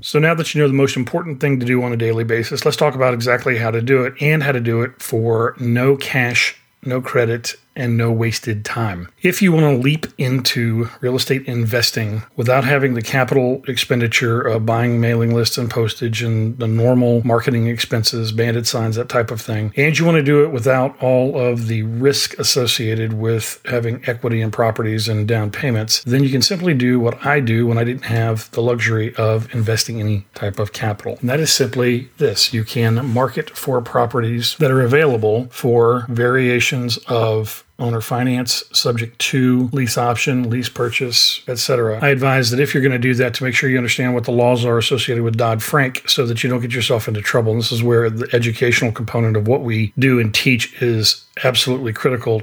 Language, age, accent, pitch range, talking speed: English, 40-59, American, 115-130 Hz, 205 wpm